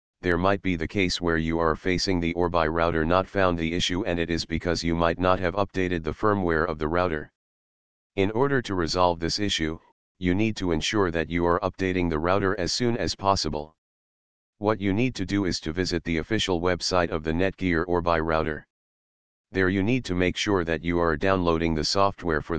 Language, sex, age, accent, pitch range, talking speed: English, male, 40-59, American, 80-95 Hz, 210 wpm